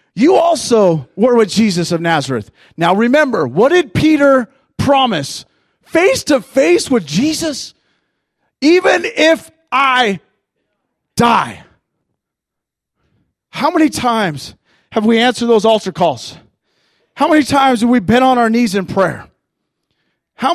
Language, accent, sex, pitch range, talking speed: English, American, male, 200-285 Hz, 125 wpm